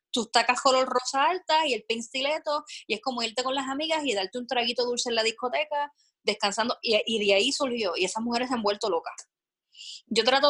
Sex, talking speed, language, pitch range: female, 215 wpm, Spanish, 205-260 Hz